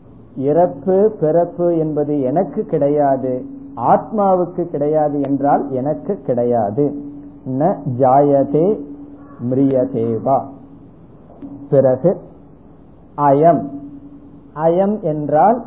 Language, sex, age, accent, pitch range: Tamil, male, 50-69, native, 145-185 Hz